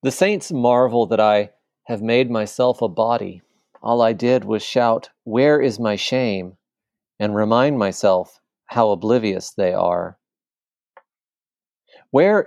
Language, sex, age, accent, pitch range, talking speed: English, male, 40-59, American, 110-130 Hz, 130 wpm